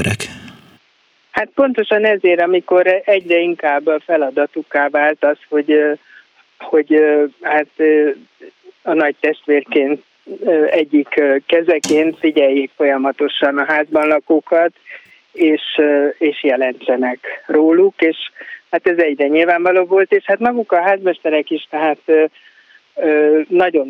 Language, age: Hungarian, 60-79